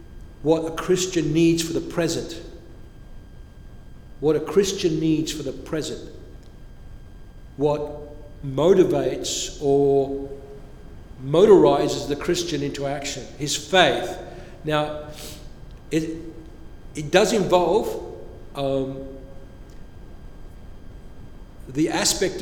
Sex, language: male, English